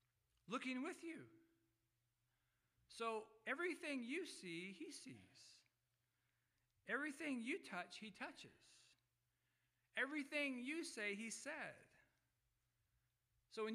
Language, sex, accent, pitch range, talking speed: English, male, American, 125-195 Hz, 90 wpm